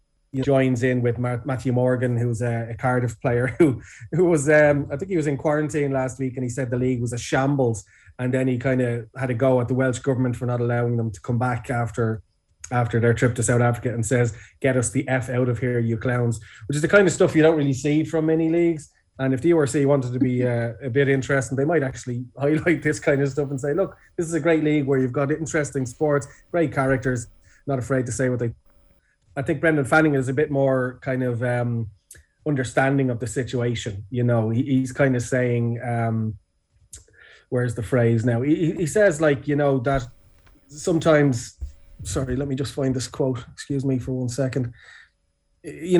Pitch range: 120-145 Hz